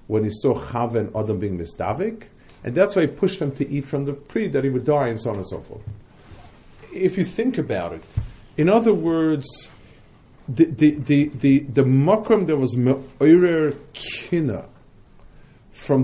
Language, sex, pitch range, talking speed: English, male, 110-150 Hz, 170 wpm